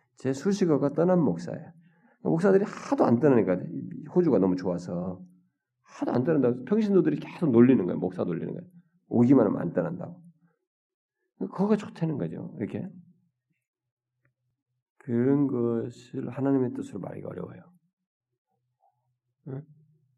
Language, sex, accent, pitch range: Korean, male, native, 115-160 Hz